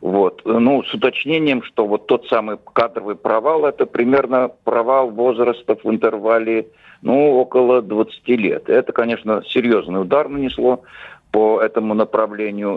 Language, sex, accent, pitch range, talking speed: Russian, male, native, 110-130 Hz, 130 wpm